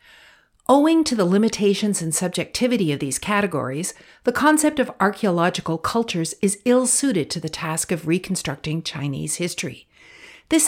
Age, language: 50-69, English